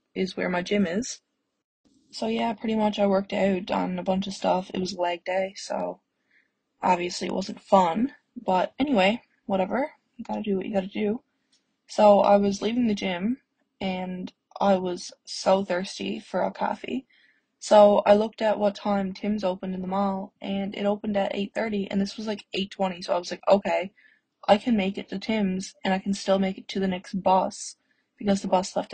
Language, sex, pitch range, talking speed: English, female, 190-225 Hz, 205 wpm